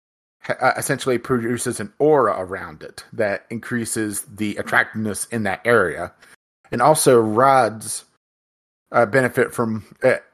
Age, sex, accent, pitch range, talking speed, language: 30-49, male, American, 105-125 Hz, 115 wpm, English